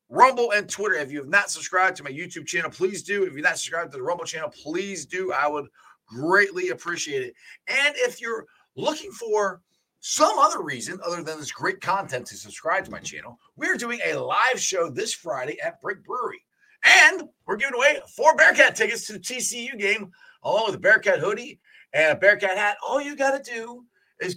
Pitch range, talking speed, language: 175-255 Hz, 205 wpm, English